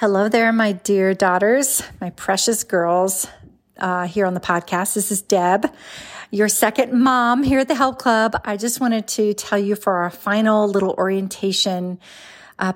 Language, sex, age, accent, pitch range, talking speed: English, female, 40-59, American, 190-220 Hz, 170 wpm